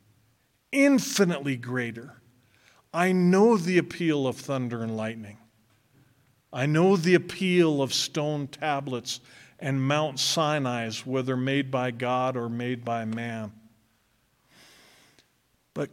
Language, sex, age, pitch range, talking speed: English, male, 50-69, 115-140 Hz, 110 wpm